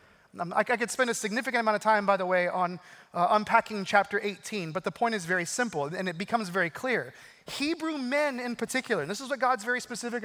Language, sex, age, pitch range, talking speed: English, male, 30-49, 185-230 Hz, 225 wpm